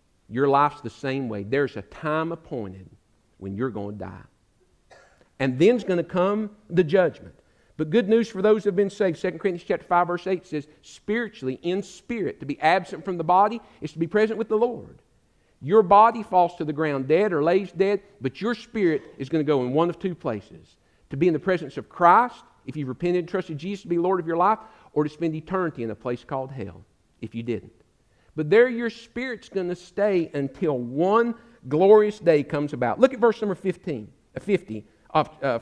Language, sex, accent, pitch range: English, male, American, 140-205 Hz